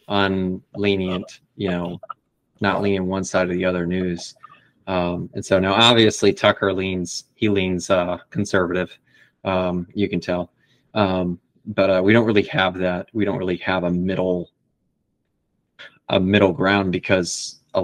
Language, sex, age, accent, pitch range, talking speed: English, male, 20-39, American, 95-105 Hz, 150 wpm